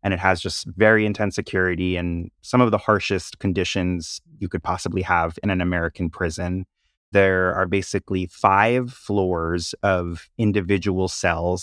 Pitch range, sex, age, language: 85-95 Hz, male, 30-49, English